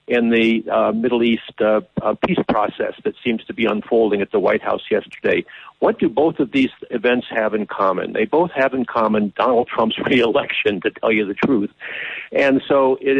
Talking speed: 200 wpm